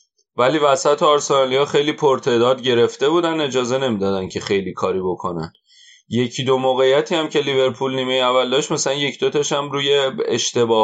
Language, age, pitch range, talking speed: Persian, 30-49, 115-160 Hz, 155 wpm